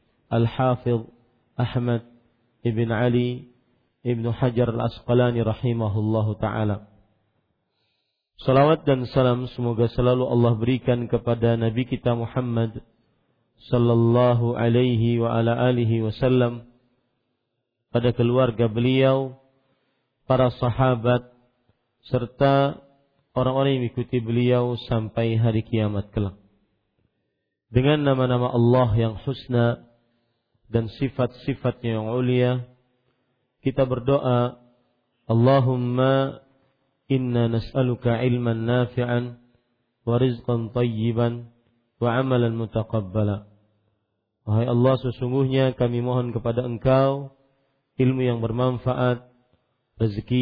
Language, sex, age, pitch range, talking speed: Malay, male, 40-59, 115-125 Hz, 85 wpm